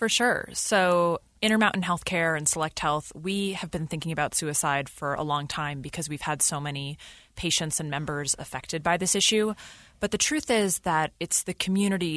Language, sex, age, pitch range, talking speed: English, female, 20-39, 150-185 Hz, 185 wpm